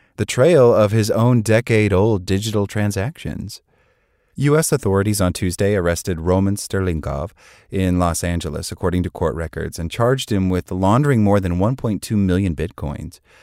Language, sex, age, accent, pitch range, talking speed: English, male, 30-49, American, 85-105 Hz, 145 wpm